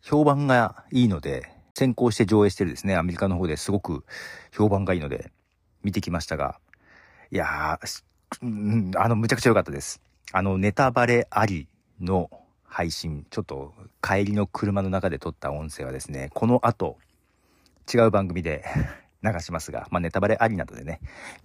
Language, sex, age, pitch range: Japanese, male, 40-59, 80-110 Hz